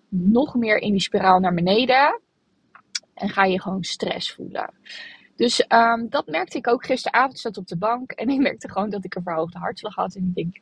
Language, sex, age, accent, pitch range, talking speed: Dutch, female, 20-39, Dutch, 190-230 Hz, 210 wpm